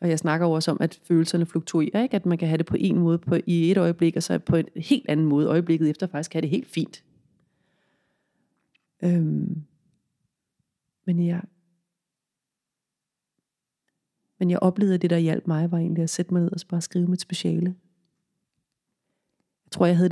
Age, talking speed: 30-49, 185 wpm